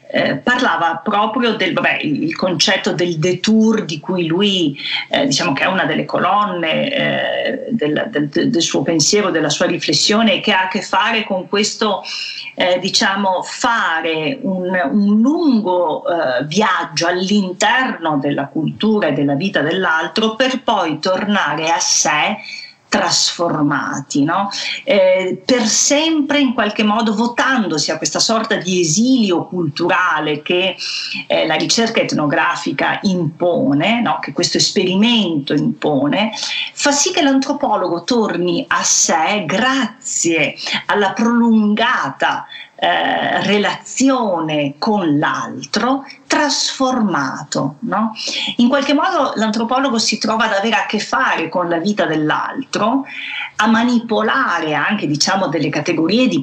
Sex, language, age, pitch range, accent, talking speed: female, Italian, 40-59, 175-250 Hz, native, 125 wpm